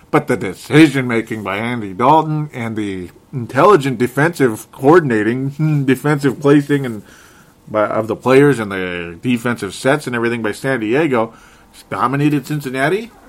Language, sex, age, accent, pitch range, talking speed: English, male, 30-49, American, 115-145 Hz, 120 wpm